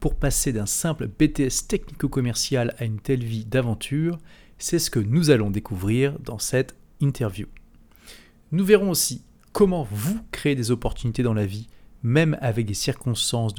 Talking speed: 155 wpm